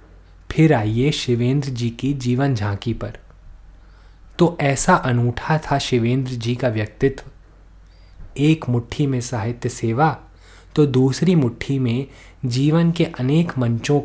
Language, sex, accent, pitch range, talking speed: Hindi, male, native, 110-140 Hz, 125 wpm